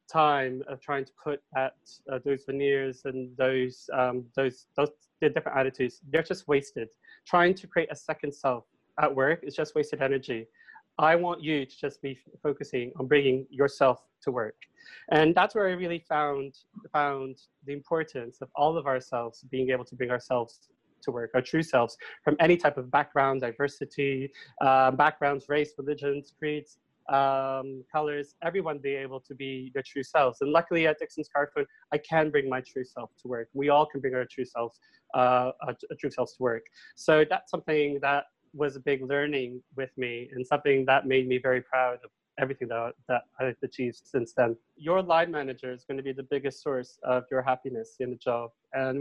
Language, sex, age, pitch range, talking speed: English, male, 20-39, 130-150 Hz, 190 wpm